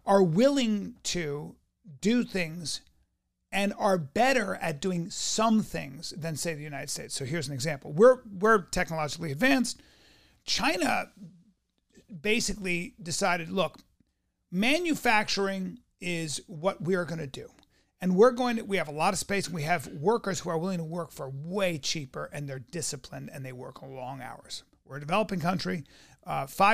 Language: English